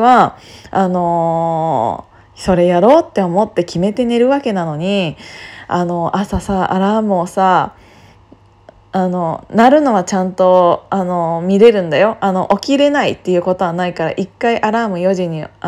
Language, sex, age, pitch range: Japanese, female, 20-39, 185-300 Hz